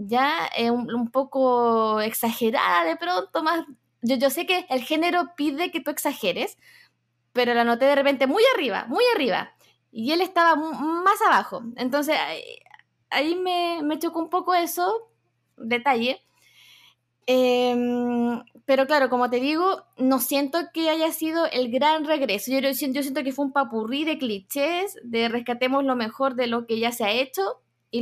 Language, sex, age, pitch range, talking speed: Spanish, female, 20-39, 245-315 Hz, 170 wpm